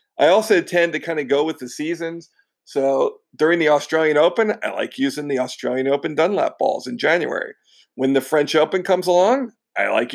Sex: male